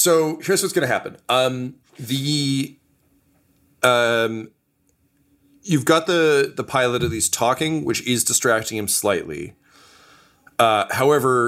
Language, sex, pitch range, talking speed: English, male, 100-125 Hz, 120 wpm